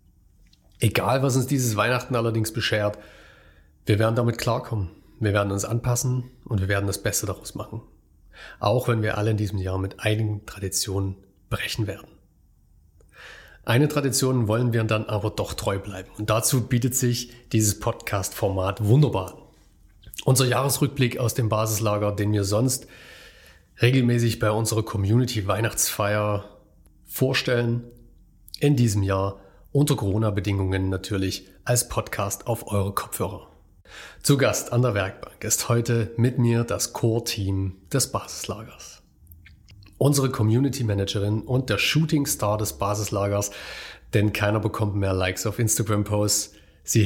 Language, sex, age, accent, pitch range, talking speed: German, male, 40-59, German, 100-120 Hz, 130 wpm